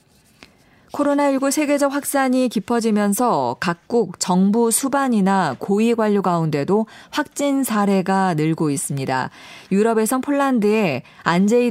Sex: female